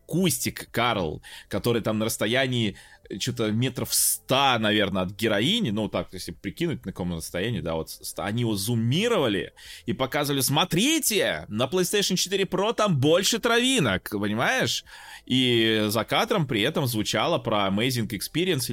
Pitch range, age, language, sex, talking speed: 100-135 Hz, 20-39, Russian, male, 145 wpm